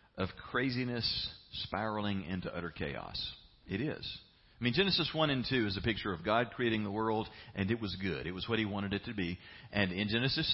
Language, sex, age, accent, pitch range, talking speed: English, male, 40-59, American, 90-115 Hz, 210 wpm